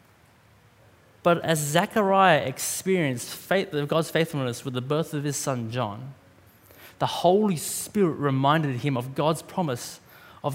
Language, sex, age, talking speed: English, male, 20-39, 125 wpm